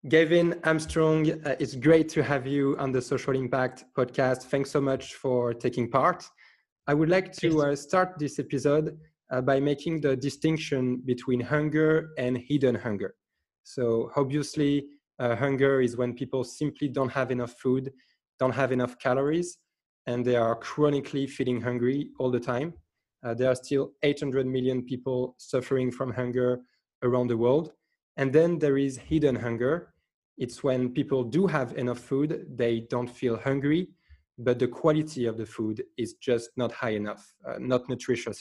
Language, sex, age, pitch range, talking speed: English, male, 20-39, 125-145 Hz, 165 wpm